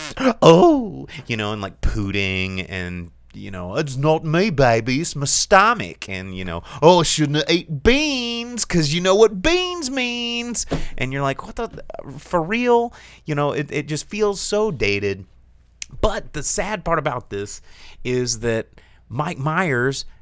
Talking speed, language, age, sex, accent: 165 wpm, English, 30-49, male, American